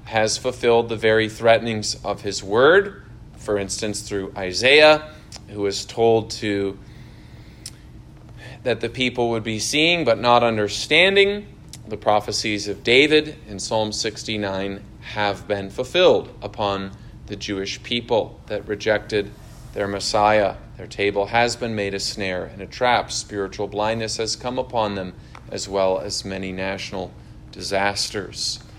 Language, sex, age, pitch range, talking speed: English, male, 30-49, 105-125 Hz, 135 wpm